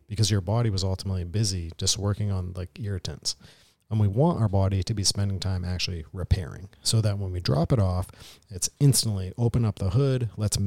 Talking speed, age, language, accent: 200 wpm, 40-59, English, American